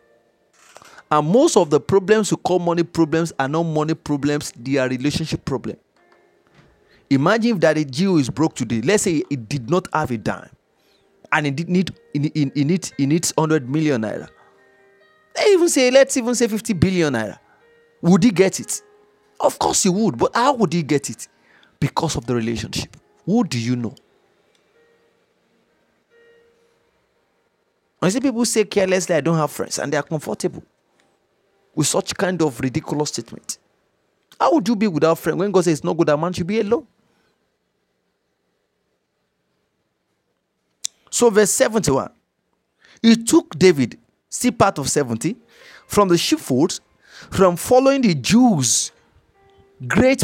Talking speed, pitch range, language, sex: 155 wpm, 145-220 Hz, English, male